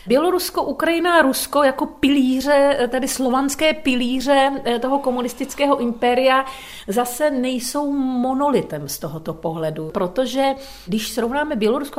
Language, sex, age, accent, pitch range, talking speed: Czech, female, 40-59, native, 215-260 Hz, 100 wpm